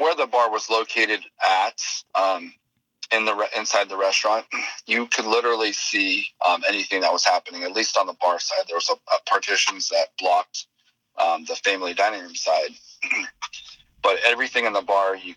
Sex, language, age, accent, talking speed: male, English, 40-59, American, 180 wpm